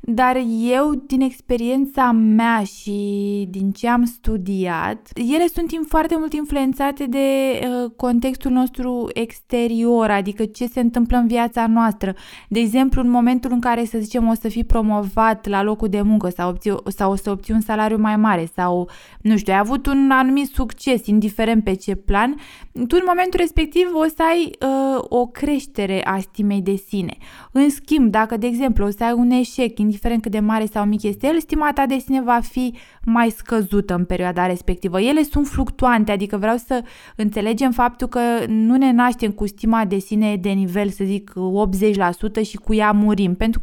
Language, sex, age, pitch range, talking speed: Romanian, female, 20-39, 215-260 Hz, 180 wpm